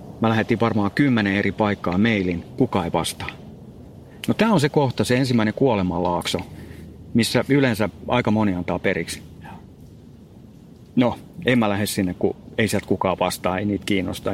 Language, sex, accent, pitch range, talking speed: Finnish, male, native, 95-120 Hz, 155 wpm